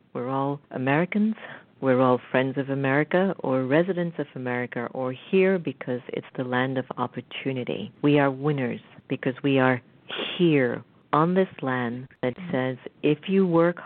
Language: English